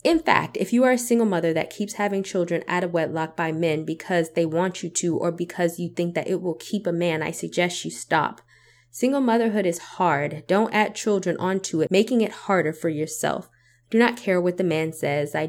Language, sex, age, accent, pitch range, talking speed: English, female, 20-39, American, 160-185 Hz, 225 wpm